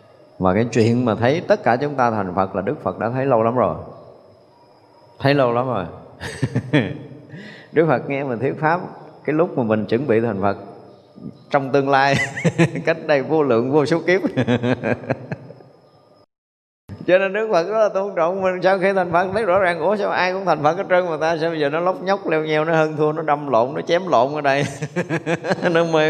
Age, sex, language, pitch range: 20-39, male, Vietnamese, 120-160 Hz